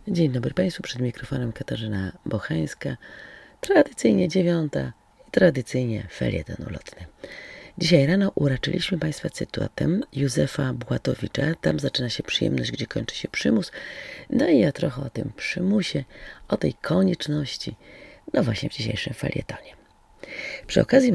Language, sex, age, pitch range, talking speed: Polish, female, 40-59, 115-180 Hz, 130 wpm